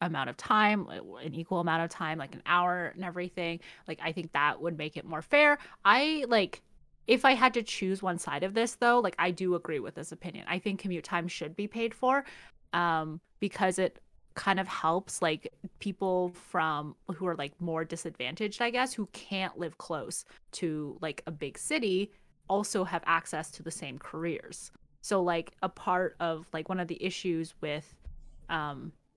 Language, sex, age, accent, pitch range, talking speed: English, female, 20-39, American, 160-195 Hz, 190 wpm